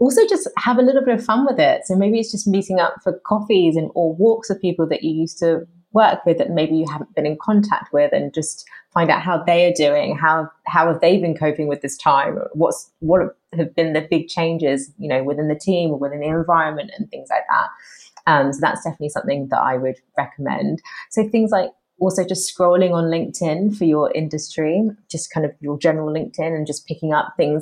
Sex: female